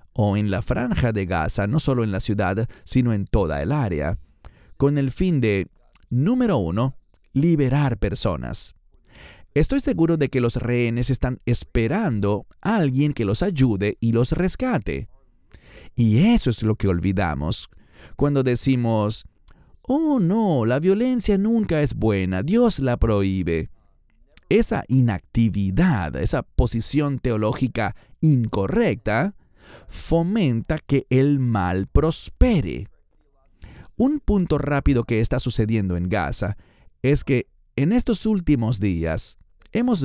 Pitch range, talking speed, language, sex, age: 105-150 Hz, 125 wpm, English, male, 40-59